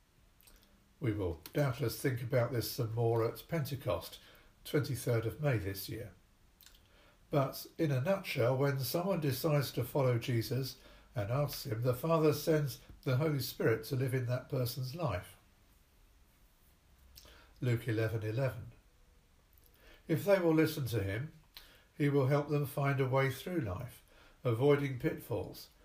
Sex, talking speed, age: male, 135 wpm, 60-79